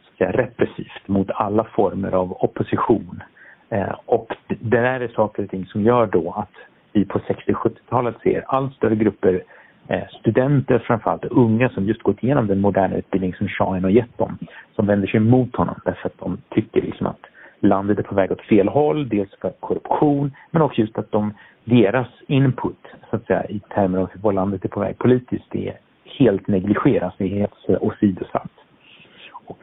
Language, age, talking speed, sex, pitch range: Swedish, 50-69, 180 wpm, male, 95-115 Hz